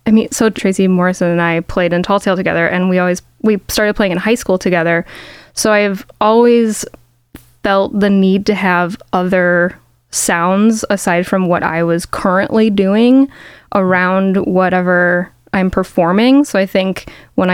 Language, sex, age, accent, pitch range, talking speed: English, female, 10-29, American, 180-210 Hz, 160 wpm